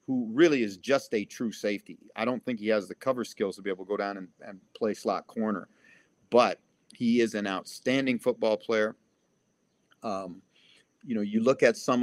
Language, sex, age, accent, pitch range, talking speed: English, male, 50-69, American, 105-130 Hz, 200 wpm